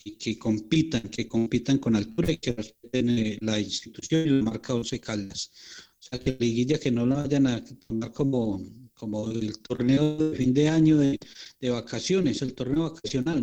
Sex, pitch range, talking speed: male, 120-145 Hz, 180 wpm